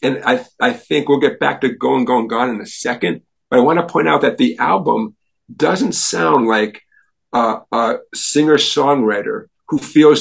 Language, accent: English, American